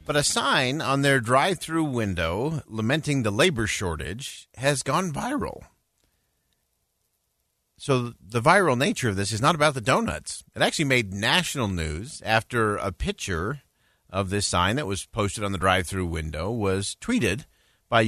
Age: 50-69